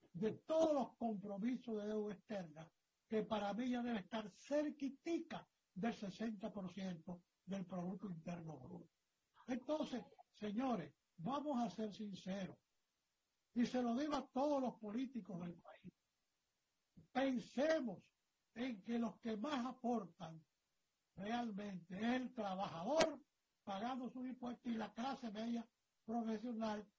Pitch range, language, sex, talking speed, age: 195-255 Hz, Spanish, male, 120 wpm, 60-79